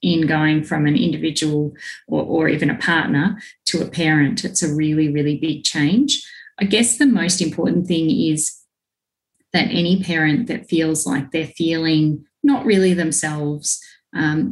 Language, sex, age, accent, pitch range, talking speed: English, female, 30-49, Australian, 150-180 Hz, 155 wpm